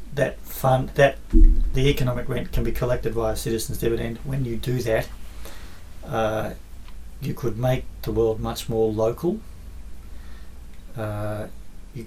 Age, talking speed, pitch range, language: 40-59, 140 wpm, 110-155 Hz, English